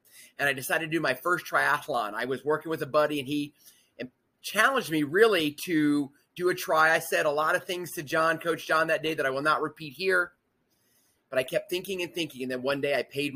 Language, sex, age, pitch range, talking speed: English, male, 30-49, 135-165 Hz, 240 wpm